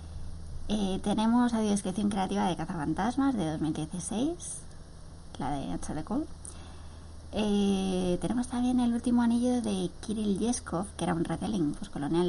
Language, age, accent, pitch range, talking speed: Spanish, 20-39, Spanish, 155-215 Hz, 125 wpm